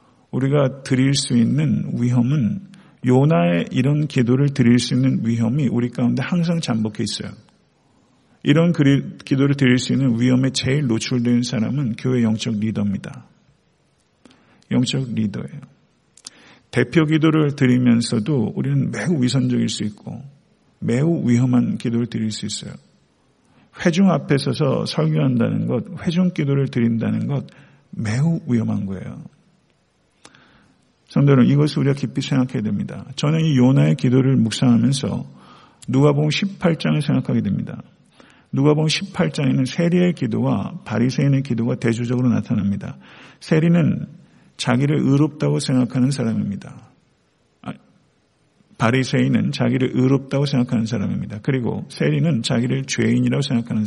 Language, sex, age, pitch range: Korean, male, 50-69, 120-150 Hz